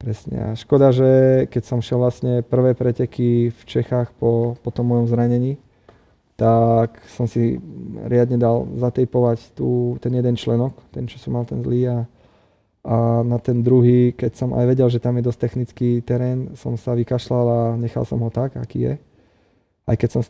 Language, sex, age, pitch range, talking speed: Slovak, male, 20-39, 115-125 Hz, 185 wpm